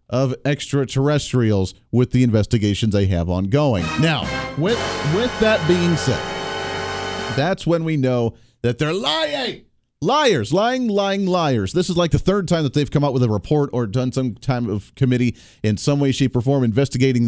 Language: English